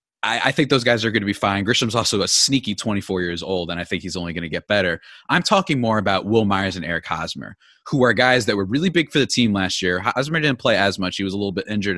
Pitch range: 105-140 Hz